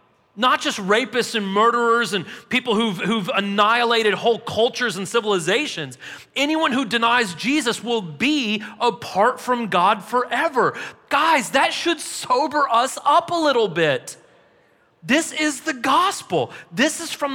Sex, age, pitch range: male, 30-49, 215-275 Hz